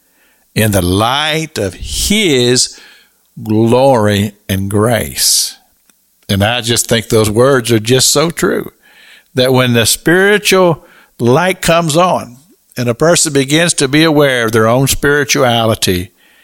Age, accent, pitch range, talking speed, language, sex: 60-79, American, 115-165 Hz, 130 wpm, English, male